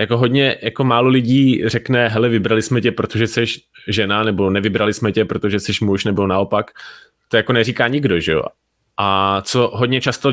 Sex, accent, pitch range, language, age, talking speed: male, native, 105-130 Hz, Czech, 20-39, 185 wpm